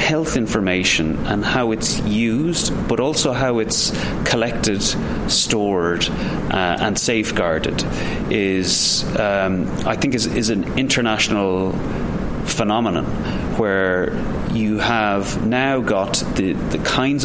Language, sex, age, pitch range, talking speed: English, male, 30-49, 95-110 Hz, 110 wpm